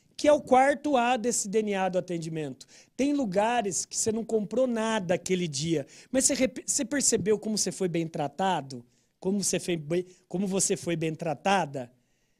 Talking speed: 155 wpm